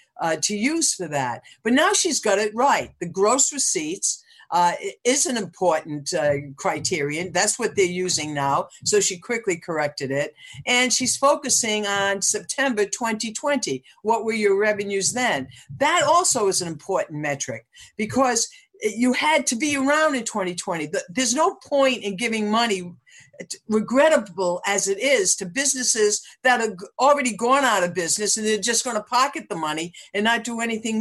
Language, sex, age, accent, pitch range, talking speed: English, female, 60-79, American, 180-250 Hz, 165 wpm